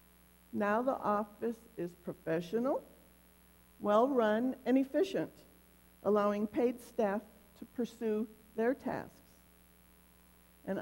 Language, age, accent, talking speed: English, 50-69, American, 90 wpm